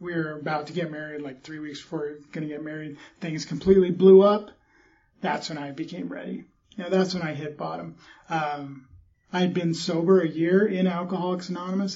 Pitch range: 150-185 Hz